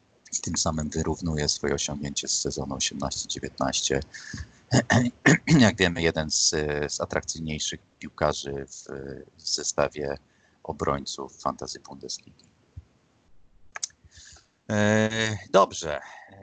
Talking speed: 85 wpm